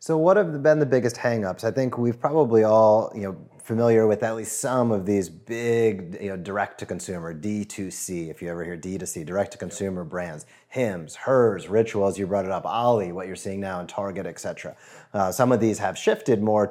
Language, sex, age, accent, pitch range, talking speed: English, male, 30-49, American, 100-125 Hz, 200 wpm